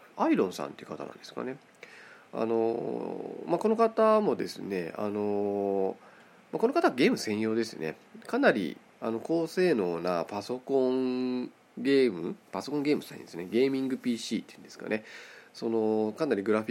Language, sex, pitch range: Japanese, male, 110-165 Hz